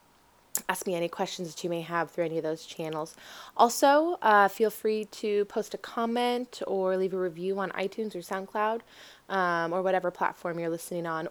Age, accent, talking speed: 20-39, American, 190 wpm